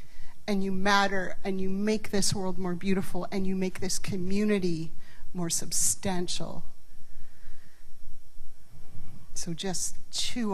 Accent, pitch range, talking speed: American, 175-210 Hz, 115 wpm